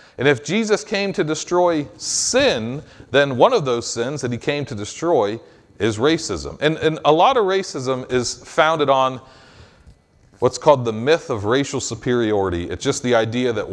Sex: male